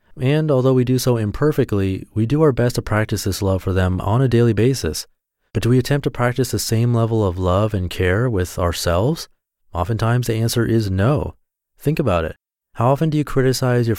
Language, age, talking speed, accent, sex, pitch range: English, 30-49, 210 wpm, American, male, 100-125 Hz